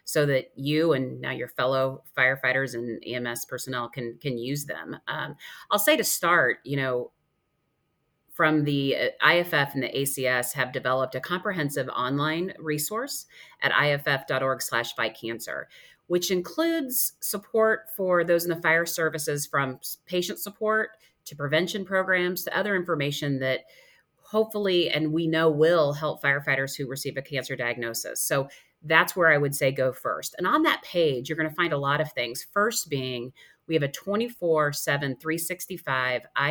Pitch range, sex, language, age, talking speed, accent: 135-175 Hz, female, English, 30-49, 160 wpm, American